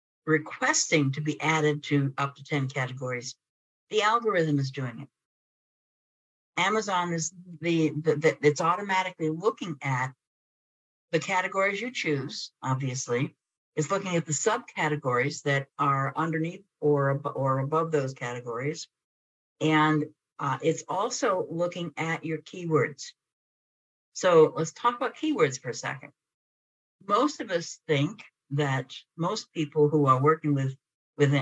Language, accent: English, American